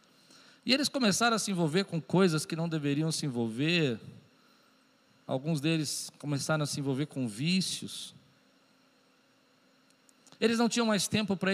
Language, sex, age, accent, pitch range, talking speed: Portuguese, male, 50-69, Brazilian, 160-245 Hz, 140 wpm